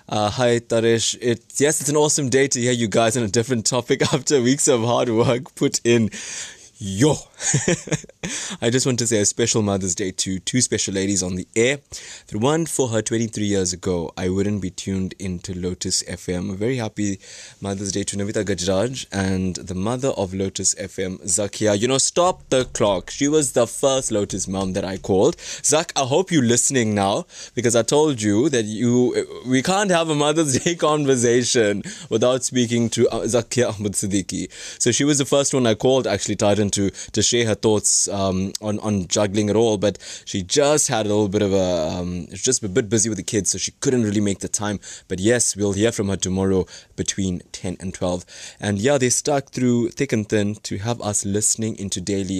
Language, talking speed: English, 205 wpm